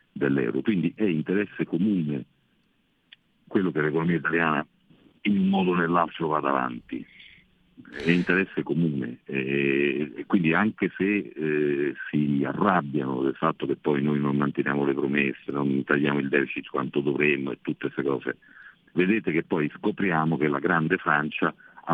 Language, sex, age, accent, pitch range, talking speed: Italian, male, 50-69, native, 70-85 Hz, 150 wpm